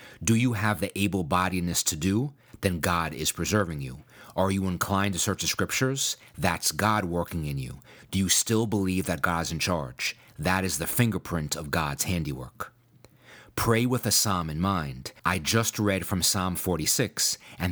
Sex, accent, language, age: male, American, English, 40-59